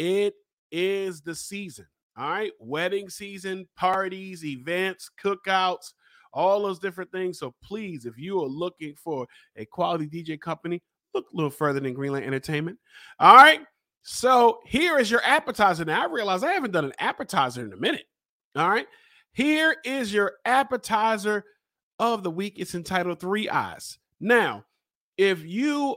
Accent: American